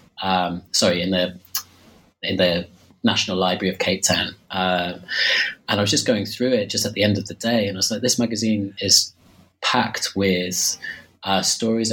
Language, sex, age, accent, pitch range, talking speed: English, male, 20-39, British, 95-105 Hz, 185 wpm